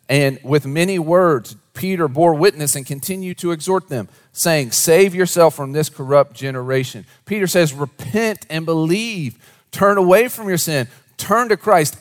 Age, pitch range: 40-59, 135-175 Hz